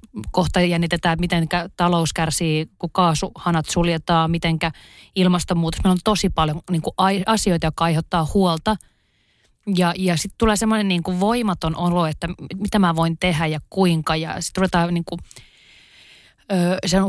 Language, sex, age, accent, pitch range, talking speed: Finnish, female, 30-49, native, 165-205 Hz, 140 wpm